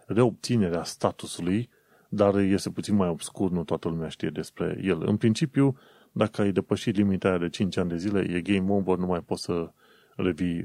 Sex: male